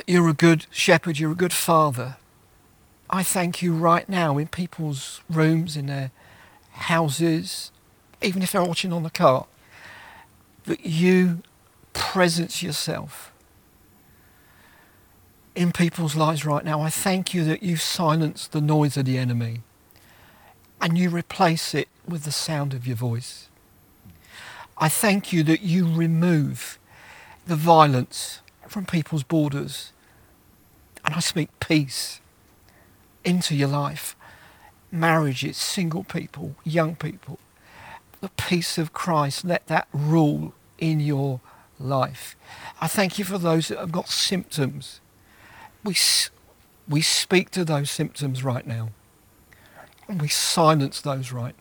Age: 50-69